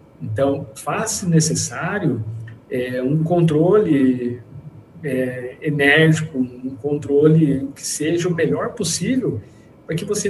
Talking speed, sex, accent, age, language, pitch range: 110 wpm, male, Brazilian, 50-69, Portuguese, 130-170 Hz